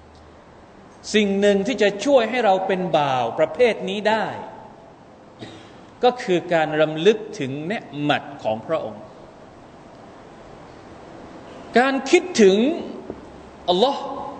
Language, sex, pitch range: Thai, male, 185-255 Hz